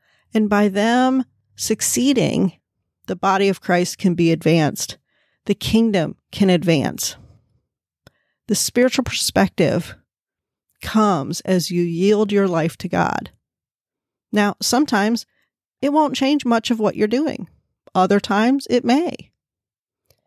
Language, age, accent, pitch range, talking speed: English, 40-59, American, 185-225 Hz, 120 wpm